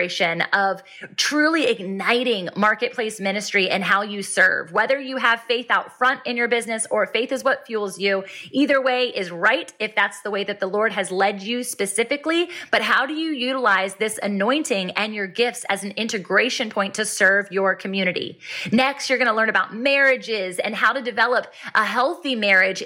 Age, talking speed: 20-39, 185 wpm